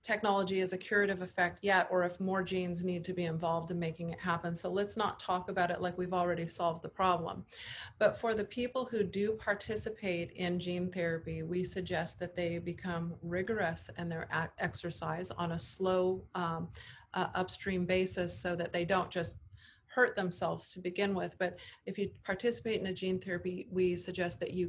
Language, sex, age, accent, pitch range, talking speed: English, female, 40-59, American, 170-190 Hz, 190 wpm